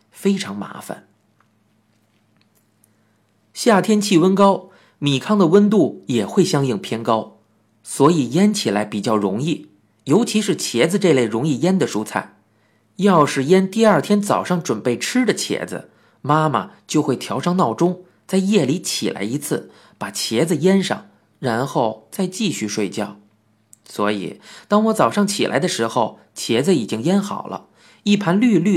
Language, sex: Chinese, male